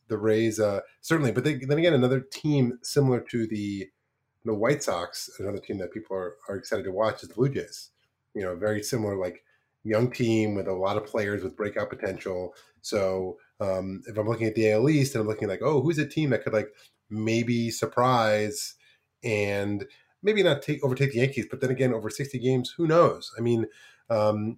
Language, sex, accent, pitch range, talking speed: English, male, American, 105-130 Hz, 210 wpm